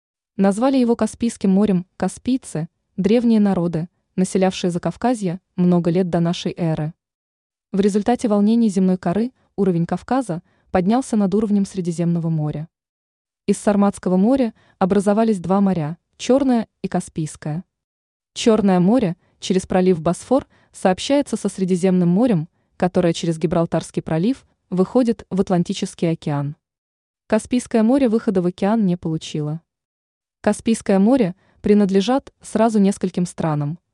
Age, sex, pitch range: 20-39, female, 170-220 Hz